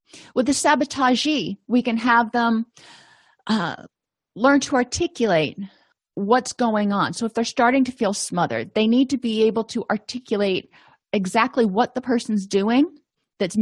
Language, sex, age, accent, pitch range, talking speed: English, female, 30-49, American, 190-240 Hz, 150 wpm